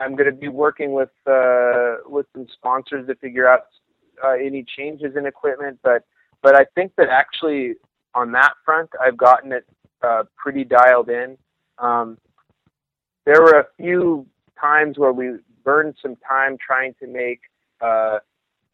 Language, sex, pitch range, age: English, male, 120-145 Hz, 30-49